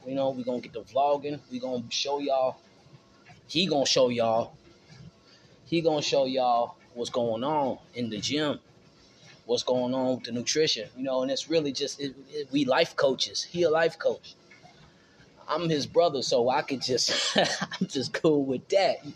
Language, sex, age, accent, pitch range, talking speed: English, male, 20-39, American, 130-160 Hz, 195 wpm